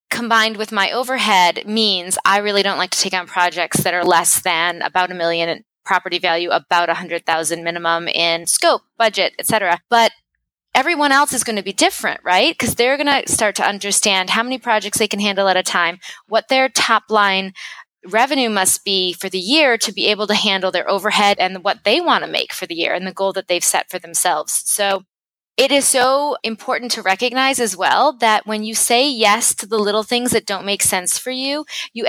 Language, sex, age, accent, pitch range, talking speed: English, female, 20-39, American, 185-230 Hz, 215 wpm